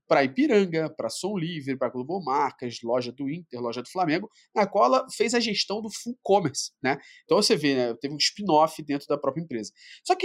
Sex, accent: male, Brazilian